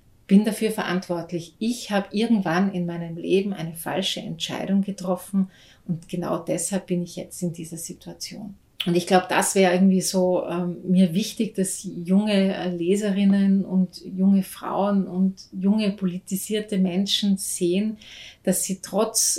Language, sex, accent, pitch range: German, female, Austrian, 175-195 Hz